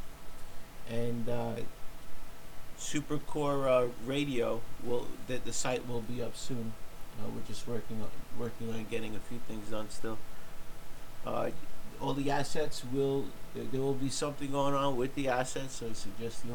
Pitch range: 120-140 Hz